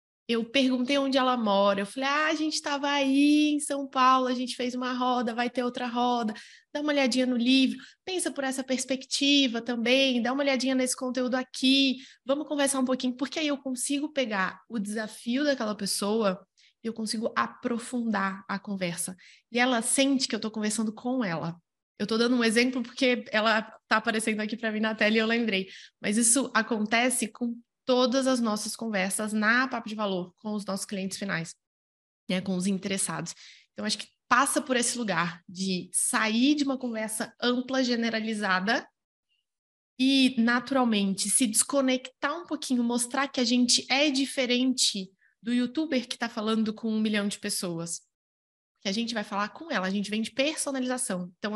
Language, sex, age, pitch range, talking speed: Portuguese, female, 20-39, 210-260 Hz, 180 wpm